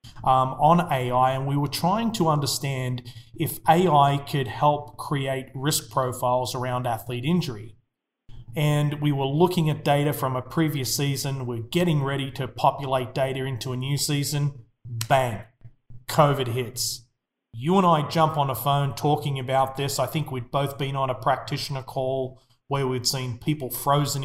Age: 30-49